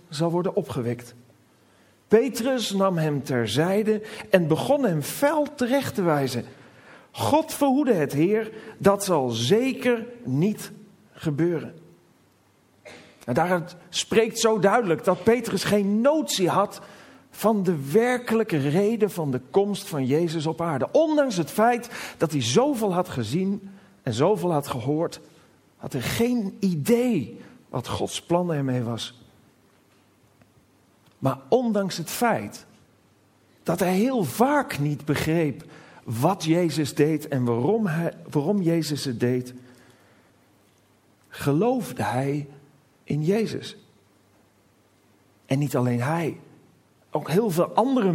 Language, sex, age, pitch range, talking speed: Dutch, male, 40-59, 140-210 Hz, 120 wpm